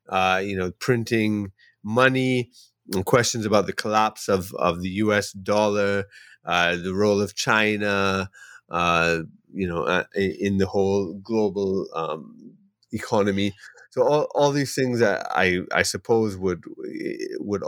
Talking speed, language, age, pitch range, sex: 145 wpm, English, 30-49, 95-125 Hz, male